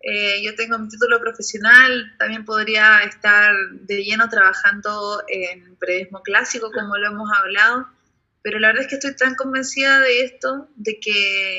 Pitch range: 210-245 Hz